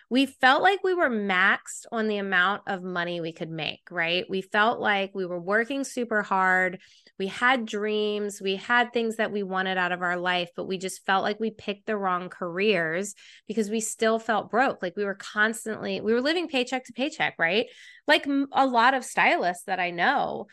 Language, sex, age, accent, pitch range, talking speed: English, female, 20-39, American, 180-230 Hz, 205 wpm